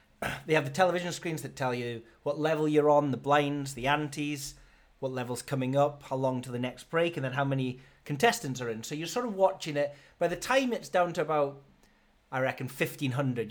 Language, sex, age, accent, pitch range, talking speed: English, male, 30-49, British, 135-165 Hz, 220 wpm